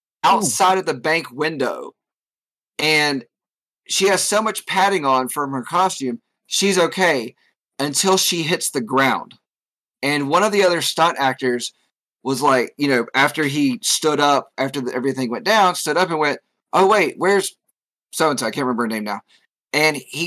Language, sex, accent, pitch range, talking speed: English, male, American, 135-180 Hz, 170 wpm